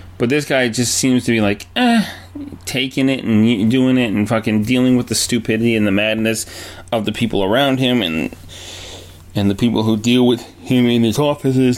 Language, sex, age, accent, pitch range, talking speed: English, male, 30-49, American, 95-120 Hz, 200 wpm